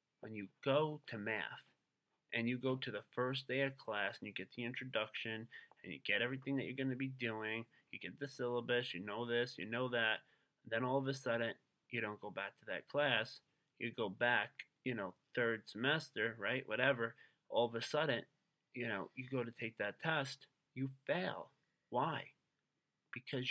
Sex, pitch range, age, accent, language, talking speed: male, 110-135 Hz, 30-49, American, English, 195 wpm